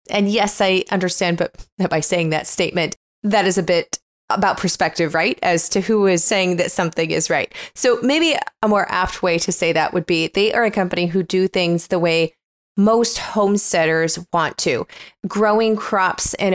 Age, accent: 20-39, American